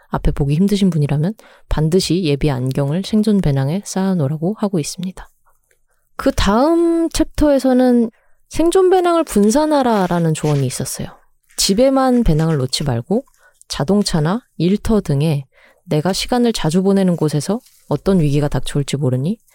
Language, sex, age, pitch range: Korean, female, 20-39, 150-210 Hz